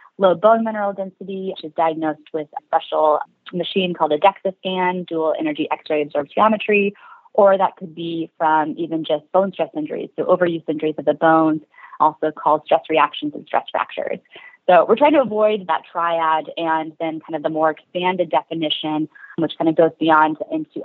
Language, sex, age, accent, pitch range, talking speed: English, female, 30-49, American, 155-195 Hz, 180 wpm